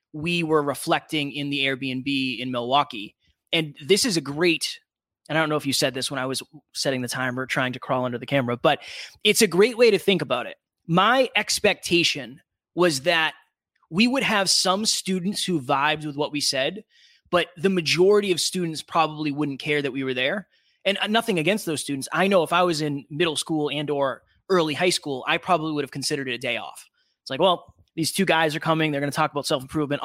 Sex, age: male, 20-39